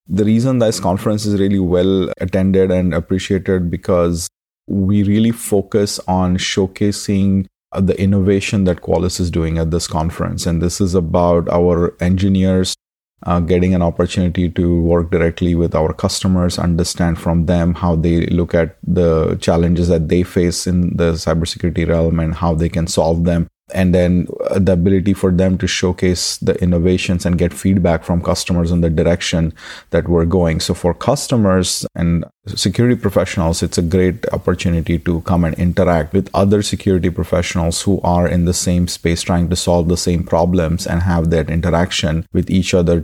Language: English